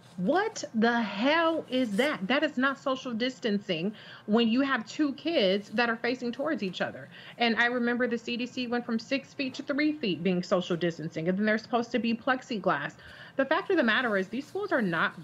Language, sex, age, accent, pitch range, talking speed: English, female, 30-49, American, 190-235 Hz, 210 wpm